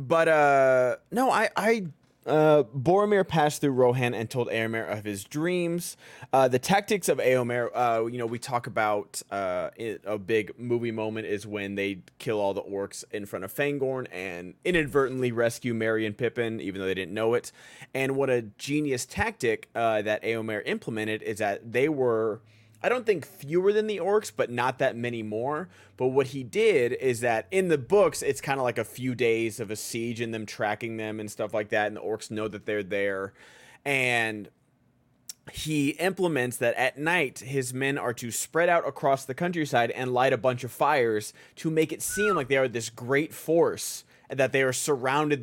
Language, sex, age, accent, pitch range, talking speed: English, male, 30-49, American, 110-145 Hz, 200 wpm